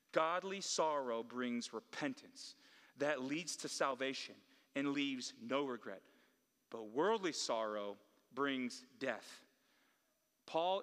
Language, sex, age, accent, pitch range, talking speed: English, male, 30-49, American, 135-180 Hz, 100 wpm